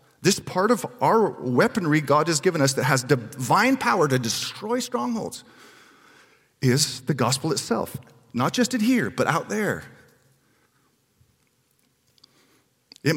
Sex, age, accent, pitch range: male, 40-59, American, 130-205 Hz